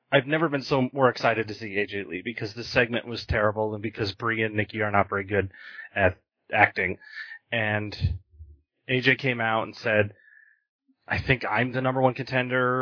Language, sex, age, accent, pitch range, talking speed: English, male, 30-49, American, 115-160 Hz, 185 wpm